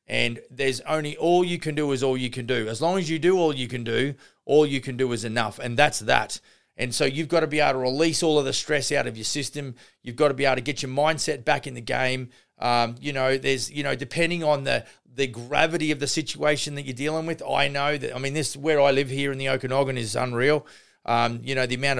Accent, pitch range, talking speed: Australian, 125-150 Hz, 265 wpm